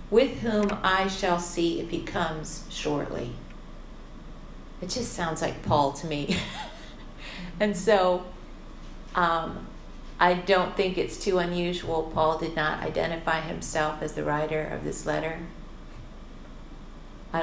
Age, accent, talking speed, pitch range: 40-59, American, 125 wpm, 150-170 Hz